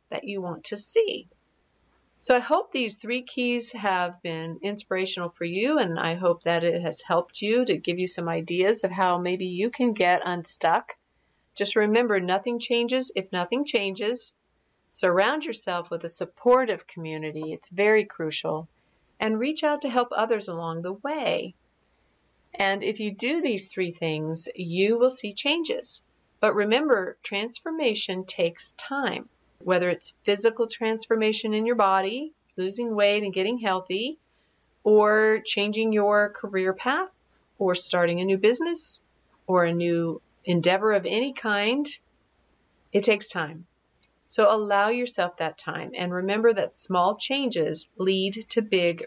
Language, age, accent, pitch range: English, 50-69, American, 175-230 Hz